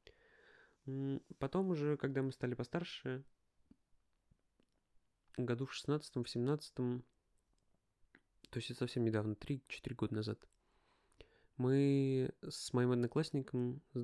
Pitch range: 115-150 Hz